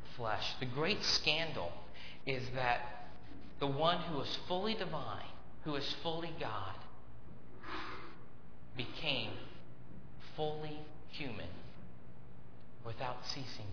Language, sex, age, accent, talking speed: English, male, 30-49, American, 90 wpm